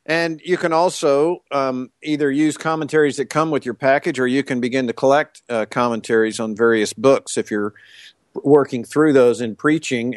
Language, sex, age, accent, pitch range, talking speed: English, male, 50-69, American, 115-140 Hz, 185 wpm